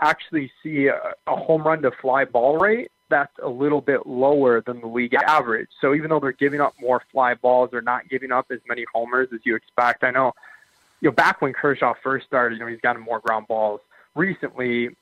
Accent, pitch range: American, 120-145 Hz